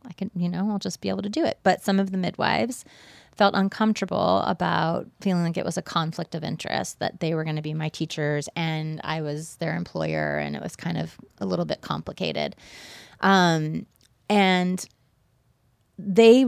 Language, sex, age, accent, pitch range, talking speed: English, female, 30-49, American, 160-195 Hz, 190 wpm